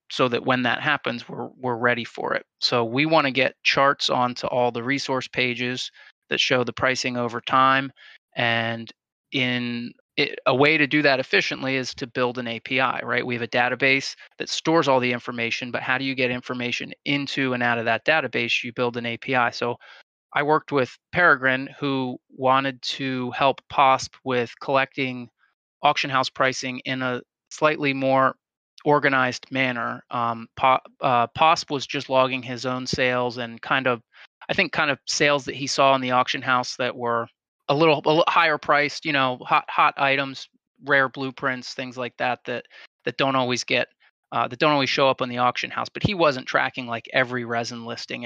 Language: English